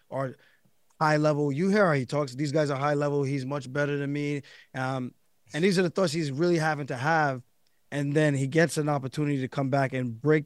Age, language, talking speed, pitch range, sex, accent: 20-39, English, 230 wpm, 130-150 Hz, male, American